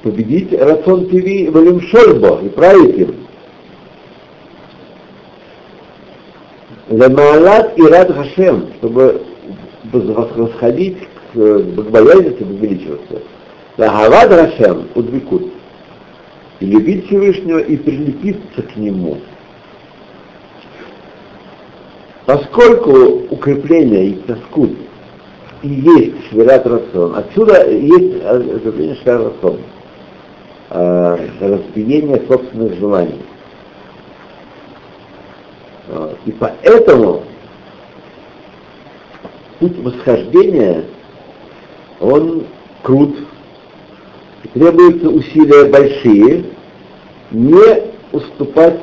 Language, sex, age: Russian, male, 60-79